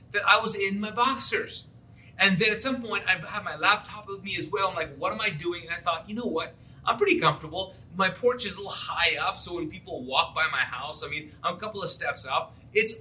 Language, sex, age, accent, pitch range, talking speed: English, male, 30-49, American, 165-220 Hz, 265 wpm